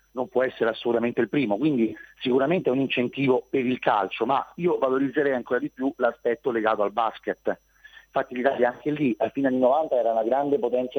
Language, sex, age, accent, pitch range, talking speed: Italian, male, 40-59, native, 120-185 Hz, 195 wpm